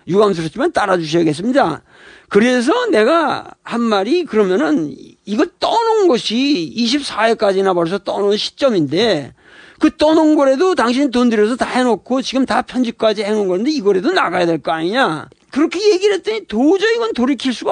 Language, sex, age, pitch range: Korean, male, 40-59, 205-300 Hz